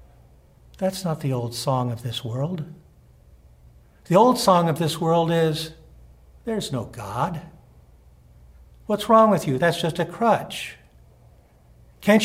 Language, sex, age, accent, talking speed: English, male, 60-79, American, 130 wpm